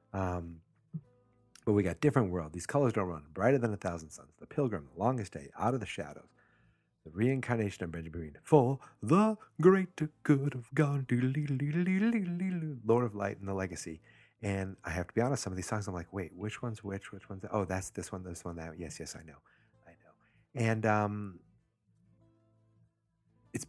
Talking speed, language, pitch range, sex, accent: 185 wpm, English, 90-120 Hz, male, American